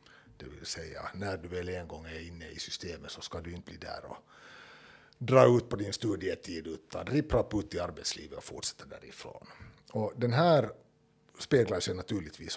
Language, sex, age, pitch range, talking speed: Swedish, male, 60-79, 90-125 Hz, 180 wpm